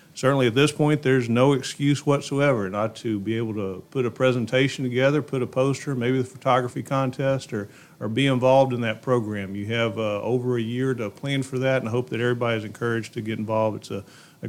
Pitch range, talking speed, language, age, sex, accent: 110-130 Hz, 225 wpm, English, 40-59, male, American